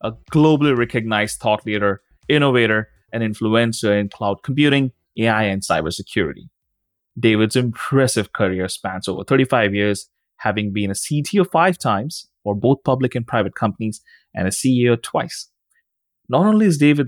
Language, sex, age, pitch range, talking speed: English, male, 20-39, 100-130 Hz, 145 wpm